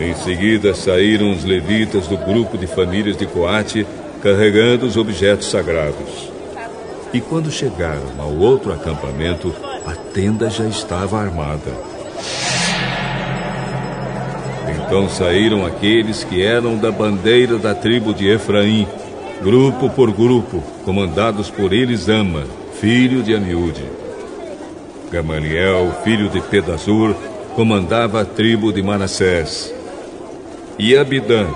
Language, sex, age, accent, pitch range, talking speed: Portuguese, male, 60-79, Brazilian, 90-115 Hz, 110 wpm